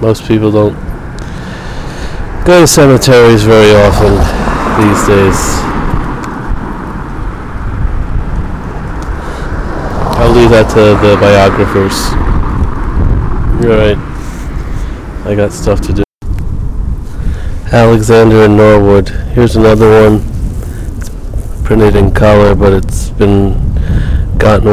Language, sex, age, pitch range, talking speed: English, male, 20-39, 85-105 Hz, 90 wpm